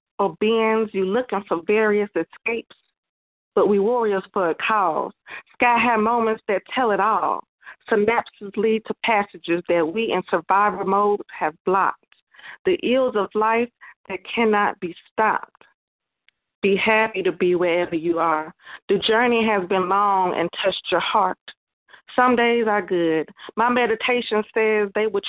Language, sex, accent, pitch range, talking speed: English, female, American, 185-225 Hz, 150 wpm